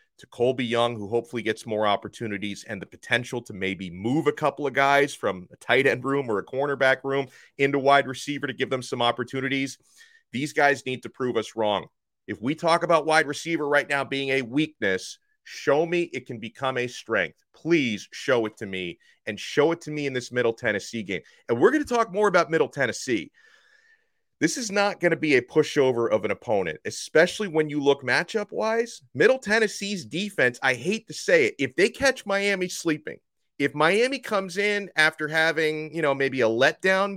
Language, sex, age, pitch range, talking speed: English, male, 30-49, 125-175 Hz, 195 wpm